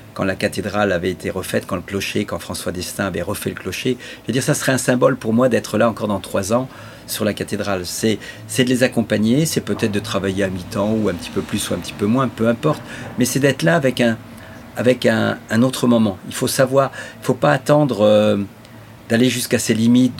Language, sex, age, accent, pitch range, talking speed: French, male, 50-69, French, 105-125 Hz, 235 wpm